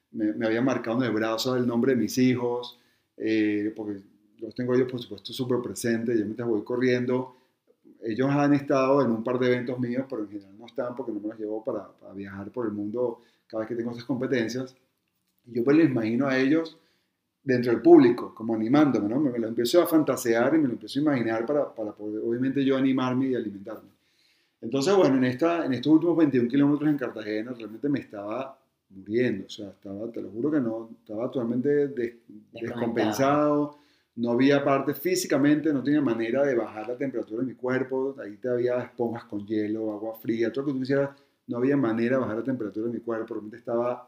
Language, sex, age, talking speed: Spanish, male, 30-49, 210 wpm